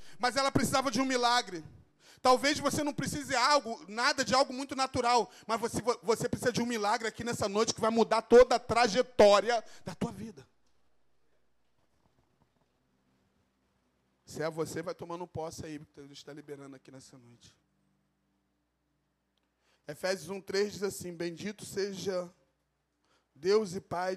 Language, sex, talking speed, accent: Portuguese, male, 145 wpm, Brazilian